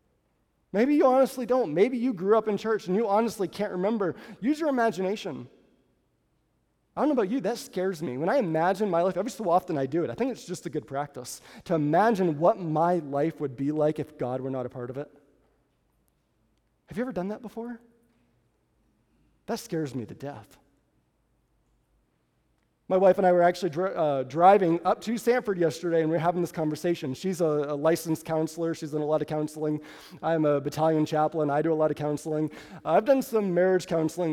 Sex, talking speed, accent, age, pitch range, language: male, 205 wpm, American, 30-49, 150-210 Hz, English